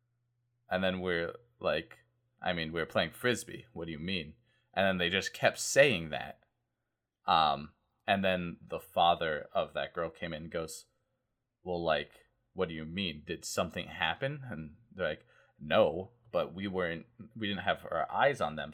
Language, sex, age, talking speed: English, male, 20-39, 175 wpm